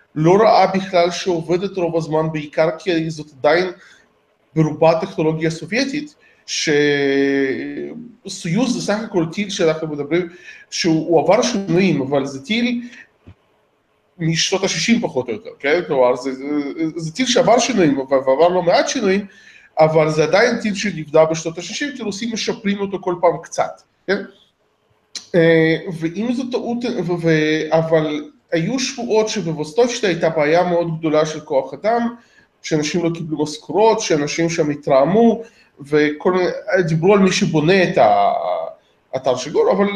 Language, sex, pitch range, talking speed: Hebrew, male, 155-200 Hz, 130 wpm